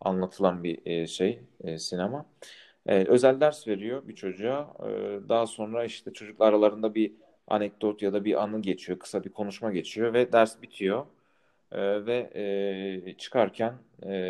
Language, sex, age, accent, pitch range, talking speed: Turkish, male, 40-59, native, 90-105 Hz, 130 wpm